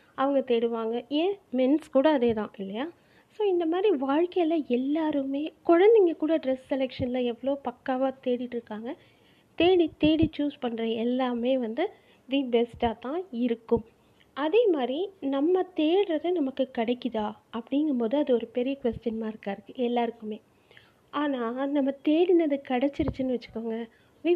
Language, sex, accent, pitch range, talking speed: Tamil, female, native, 240-320 Hz, 125 wpm